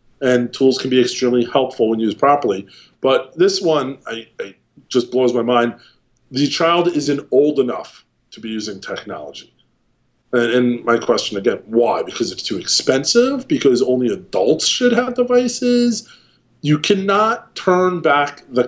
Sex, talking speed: male, 150 wpm